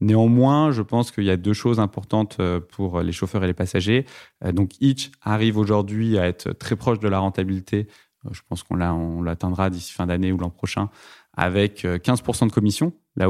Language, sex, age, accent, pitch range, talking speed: French, male, 20-39, French, 95-120 Hz, 195 wpm